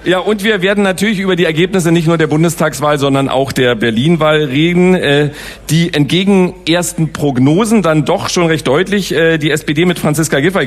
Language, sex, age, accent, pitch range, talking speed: English, male, 40-59, German, 135-175 Hz, 175 wpm